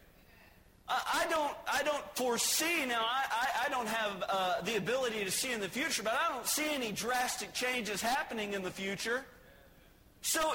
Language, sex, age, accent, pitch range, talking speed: English, male, 40-59, American, 185-245 Hz, 170 wpm